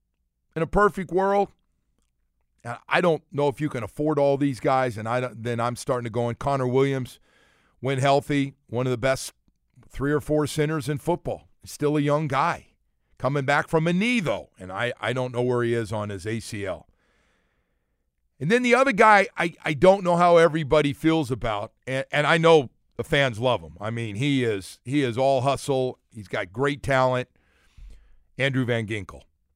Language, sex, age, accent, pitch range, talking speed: English, male, 50-69, American, 110-175 Hz, 190 wpm